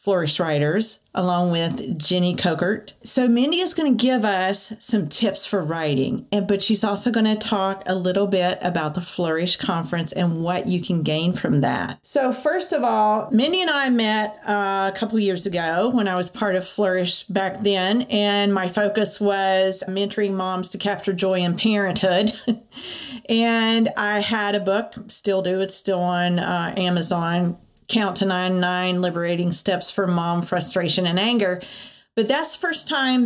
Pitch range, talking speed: 180-215 Hz, 175 wpm